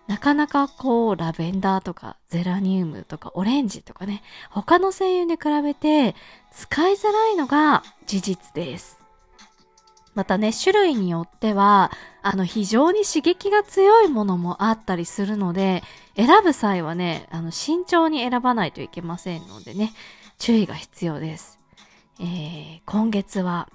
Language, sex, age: Japanese, female, 20-39